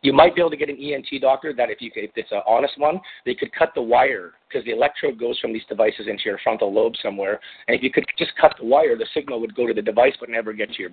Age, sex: 40-59, male